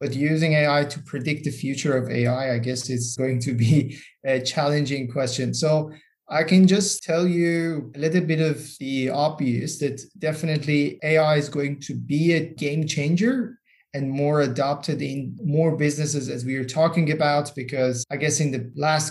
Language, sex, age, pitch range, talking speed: English, male, 20-39, 140-165 Hz, 180 wpm